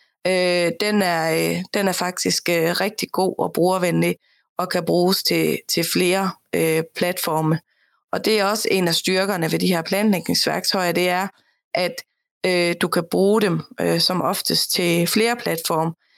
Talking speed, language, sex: 155 wpm, Danish, female